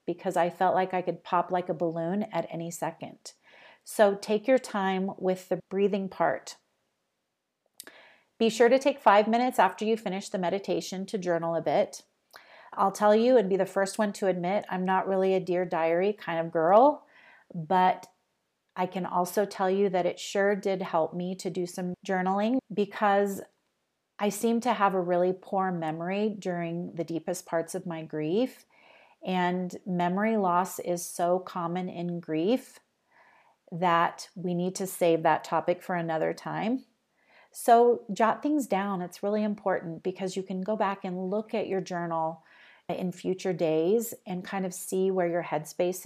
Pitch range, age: 175-215 Hz, 30-49